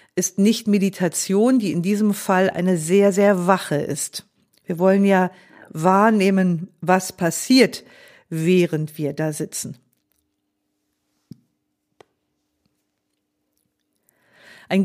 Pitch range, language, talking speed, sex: 185-225 Hz, German, 95 wpm, female